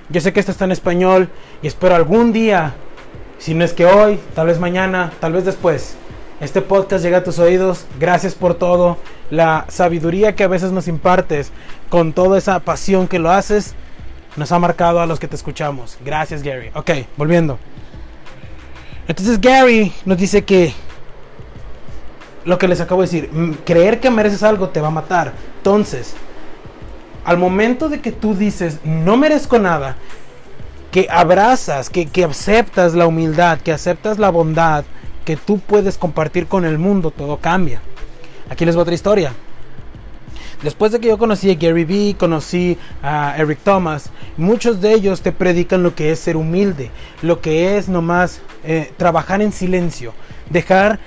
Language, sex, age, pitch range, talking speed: English, male, 30-49, 160-195 Hz, 165 wpm